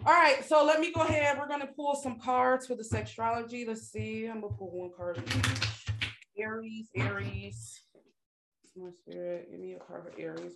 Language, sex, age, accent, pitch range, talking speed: English, female, 20-39, American, 170-225 Hz, 205 wpm